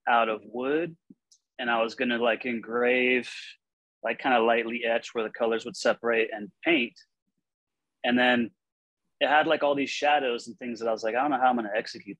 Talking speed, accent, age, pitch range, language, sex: 215 wpm, American, 30-49, 110-125 Hz, English, male